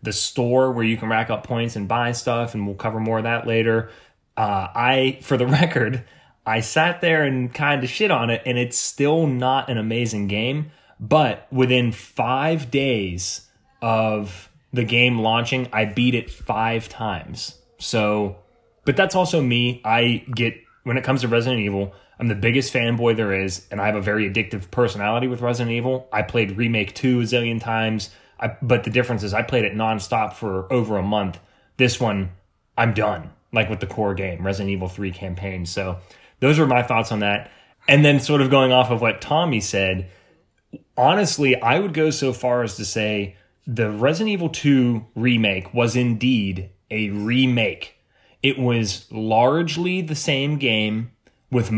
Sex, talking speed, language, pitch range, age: male, 180 wpm, English, 105-130 Hz, 20-39